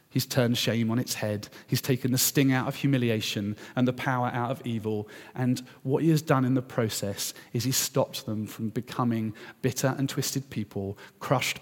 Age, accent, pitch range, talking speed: 40-59, British, 110-130 Hz, 195 wpm